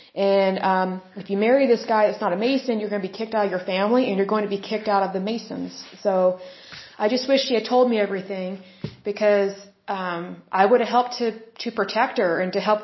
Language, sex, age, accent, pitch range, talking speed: Hindi, female, 20-39, American, 195-230 Hz, 245 wpm